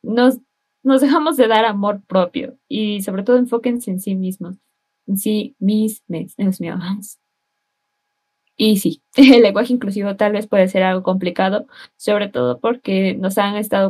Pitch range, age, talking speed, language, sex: 190-230 Hz, 20-39, 160 wpm, Spanish, female